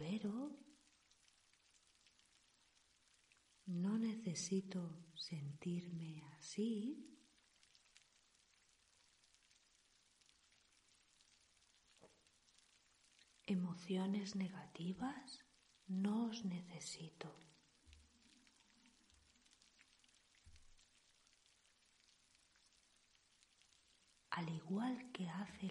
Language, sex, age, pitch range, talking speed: Spanish, female, 40-59, 165-240 Hz, 35 wpm